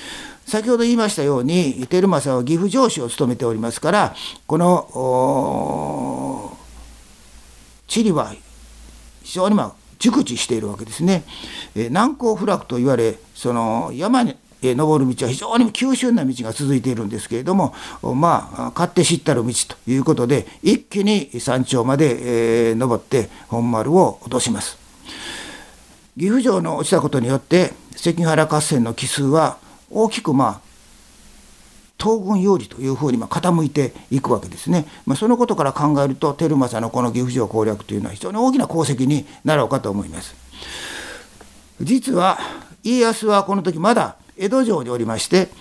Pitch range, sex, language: 120-195 Hz, male, Japanese